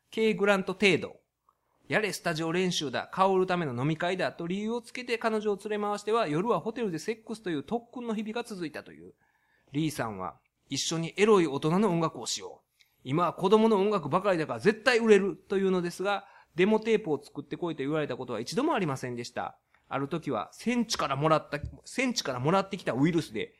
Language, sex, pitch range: Japanese, male, 145-210 Hz